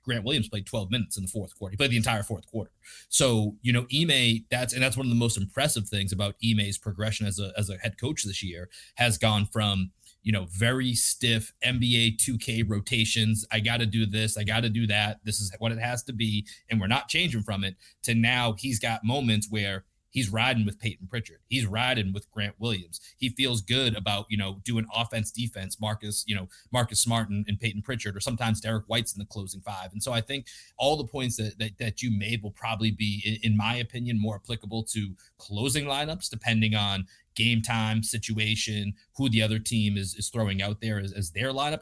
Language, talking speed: English, 220 wpm